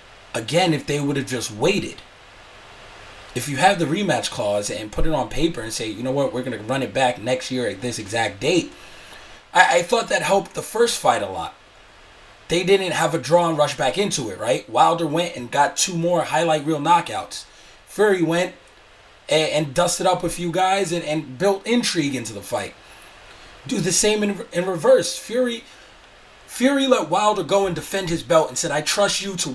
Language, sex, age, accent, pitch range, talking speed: English, male, 30-49, American, 145-195 Hz, 205 wpm